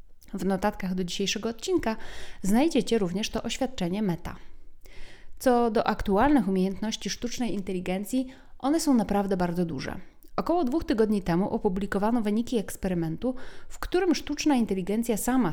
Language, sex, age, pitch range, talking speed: Polish, female, 30-49, 195-255 Hz, 130 wpm